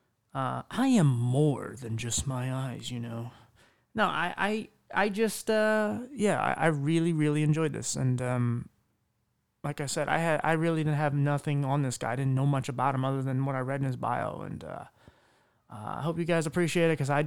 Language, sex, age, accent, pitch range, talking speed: English, male, 20-39, American, 125-155 Hz, 220 wpm